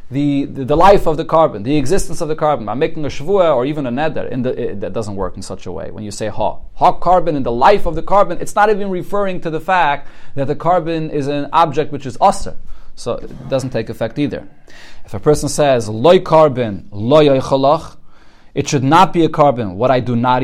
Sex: male